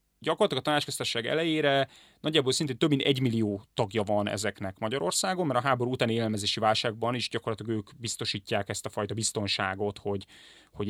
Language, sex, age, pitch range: Hungarian, male, 30-49, 105-145 Hz